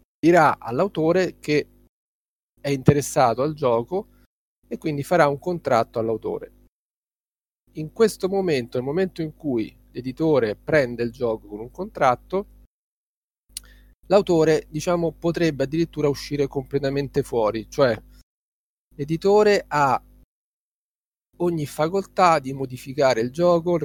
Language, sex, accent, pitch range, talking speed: Italian, male, native, 125-165 Hz, 110 wpm